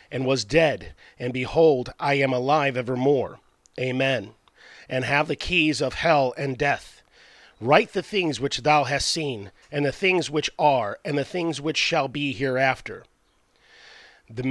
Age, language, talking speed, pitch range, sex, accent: 40-59, English, 155 wpm, 130-160 Hz, male, American